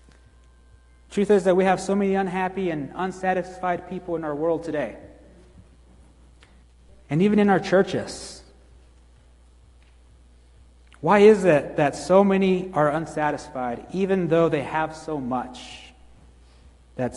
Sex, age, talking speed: male, 30-49, 120 wpm